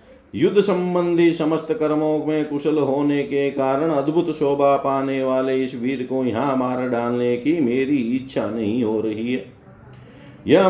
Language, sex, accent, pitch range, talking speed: Hindi, male, native, 130-165 Hz, 150 wpm